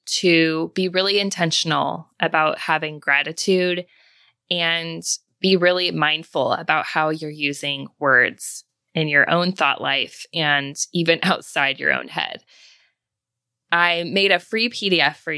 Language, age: English, 20-39